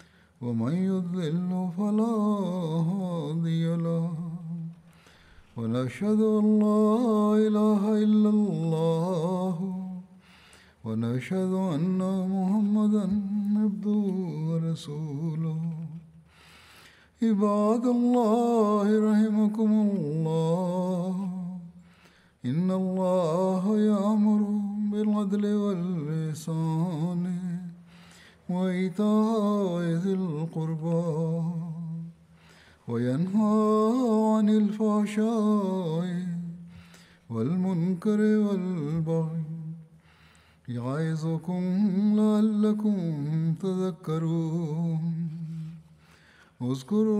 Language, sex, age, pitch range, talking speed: Arabic, male, 60-79, 165-210 Hz, 45 wpm